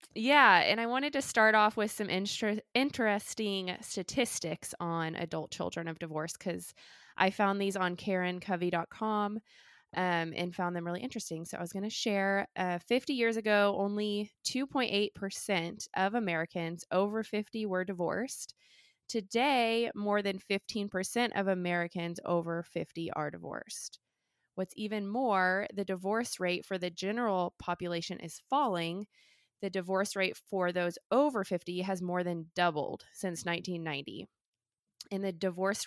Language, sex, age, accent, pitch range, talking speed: English, female, 20-39, American, 175-210 Hz, 135 wpm